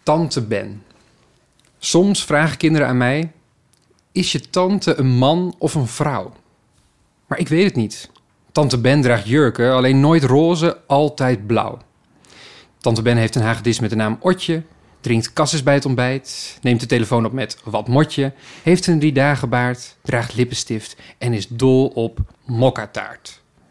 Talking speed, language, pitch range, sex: 155 wpm, Dutch, 120-155 Hz, male